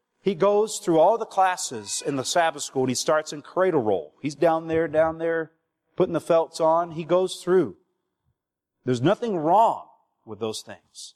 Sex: male